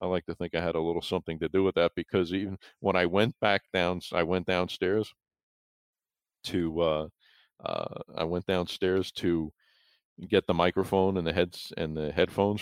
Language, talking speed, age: English, 185 wpm, 50-69